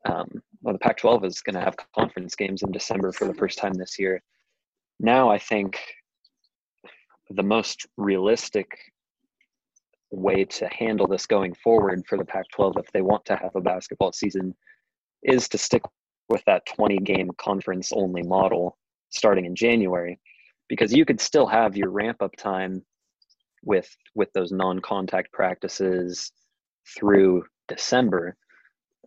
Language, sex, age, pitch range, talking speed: English, male, 20-39, 90-100 Hz, 145 wpm